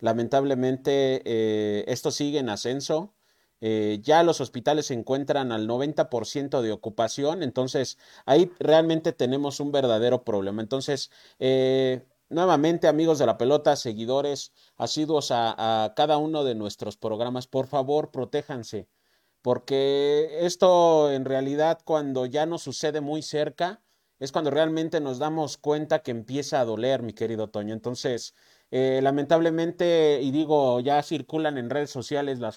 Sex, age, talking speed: male, 40-59, 140 wpm